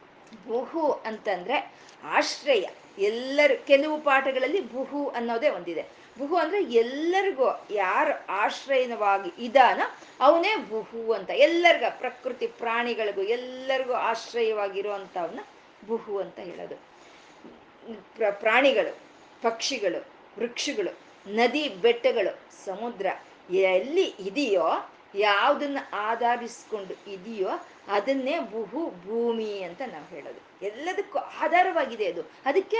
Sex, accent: female, native